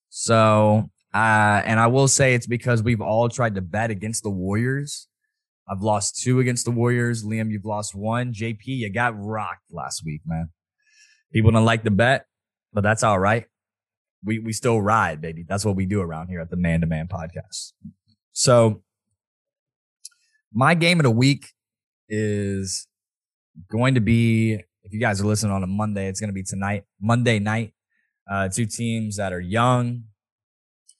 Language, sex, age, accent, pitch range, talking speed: English, male, 20-39, American, 100-115 Hz, 175 wpm